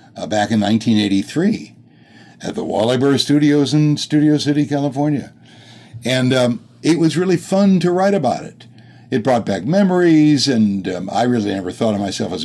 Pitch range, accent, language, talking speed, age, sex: 105-145 Hz, American, English, 175 wpm, 60-79, male